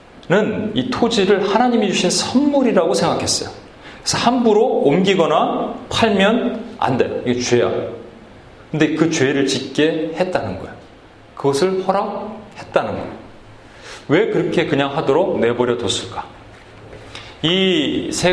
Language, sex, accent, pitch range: Korean, male, native, 120-200 Hz